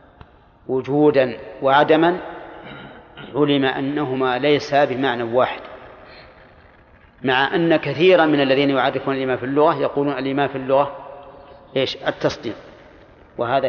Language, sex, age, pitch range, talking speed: Arabic, male, 40-59, 125-150 Hz, 100 wpm